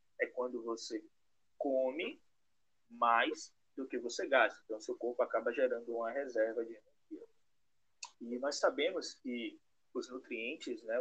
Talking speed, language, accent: 135 wpm, Portuguese, Brazilian